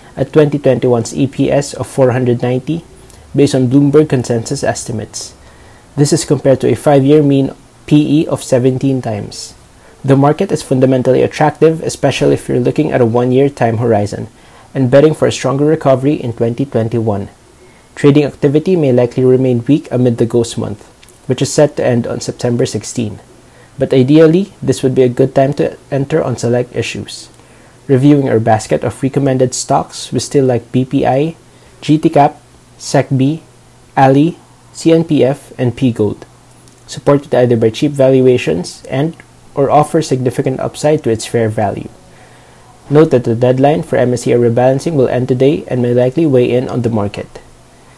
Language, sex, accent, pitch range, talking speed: English, male, Filipino, 120-145 Hz, 155 wpm